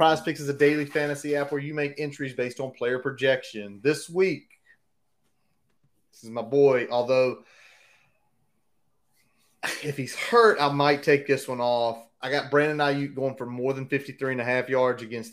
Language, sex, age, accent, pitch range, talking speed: English, male, 30-49, American, 125-150 Hz, 160 wpm